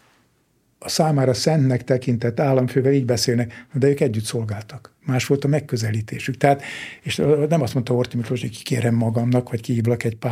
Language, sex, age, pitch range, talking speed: Hungarian, male, 60-79, 120-140 Hz, 155 wpm